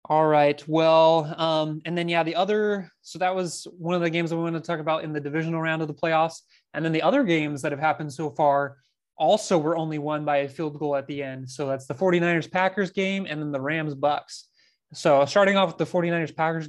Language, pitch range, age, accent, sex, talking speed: English, 145-170 Hz, 20-39, American, male, 245 wpm